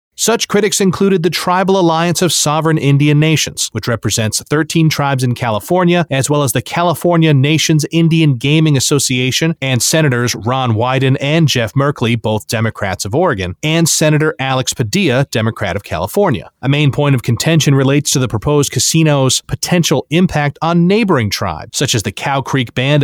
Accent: American